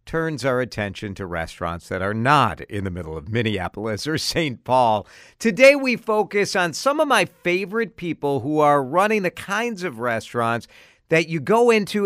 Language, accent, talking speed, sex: English, American, 180 wpm, male